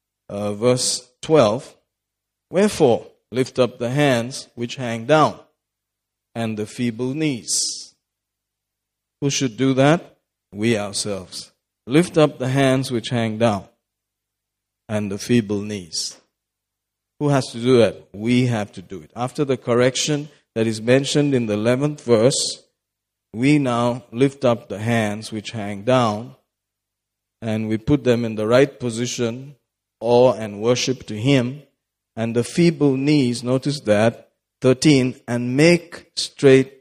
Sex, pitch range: male, 110-135 Hz